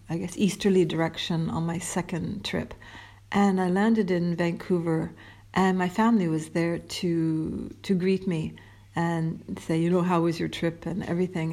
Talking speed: 165 wpm